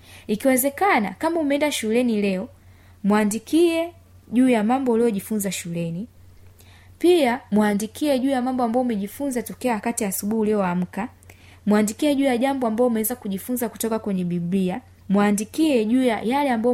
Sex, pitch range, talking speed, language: female, 175-235 Hz, 140 wpm, Swahili